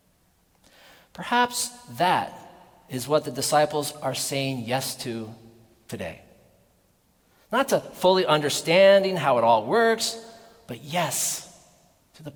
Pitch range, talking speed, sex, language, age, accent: 145-215 Hz, 110 wpm, male, English, 50-69, American